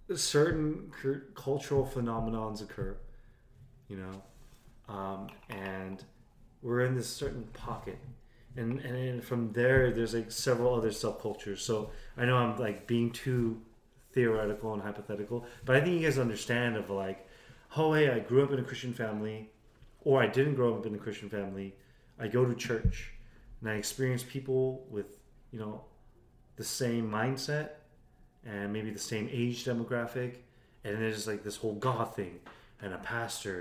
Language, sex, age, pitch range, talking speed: English, male, 30-49, 105-125 Hz, 155 wpm